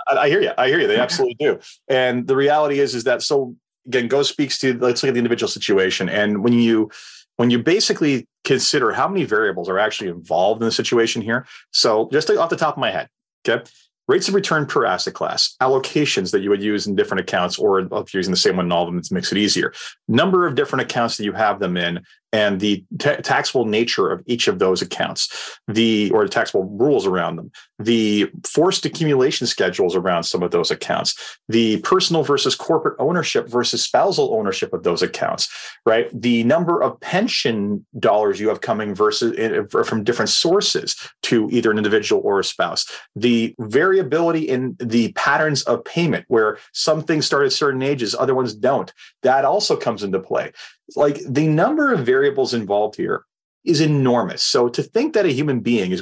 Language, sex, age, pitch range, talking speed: English, male, 30-49, 110-155 Hz, 200 wpm